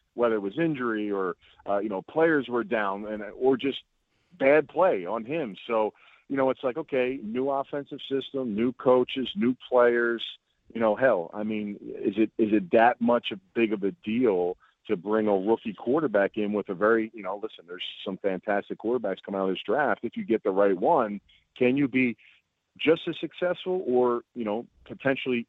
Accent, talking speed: American, 200 wpm